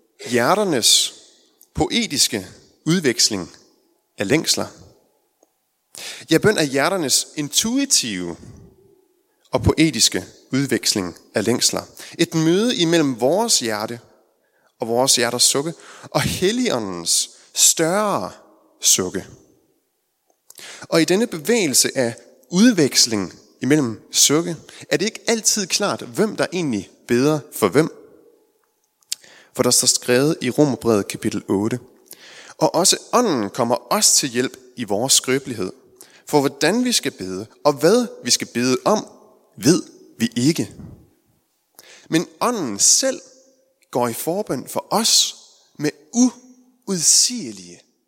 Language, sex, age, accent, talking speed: Danish, male, 30-49, native, 110 wpm